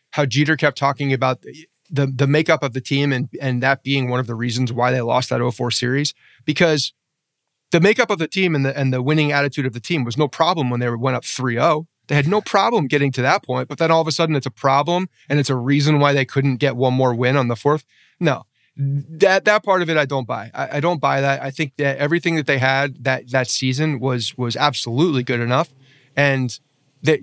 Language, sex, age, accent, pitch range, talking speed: English, male, 30-49, American, 125-150 Hz, 240 wpm